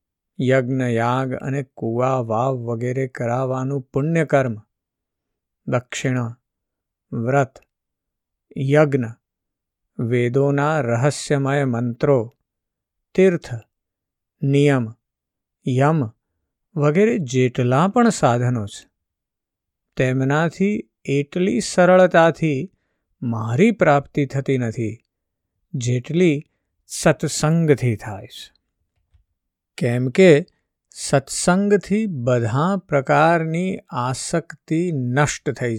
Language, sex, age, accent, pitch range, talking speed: Gujarati, male, 50-69, native, 115-150 Hz, 70 wpm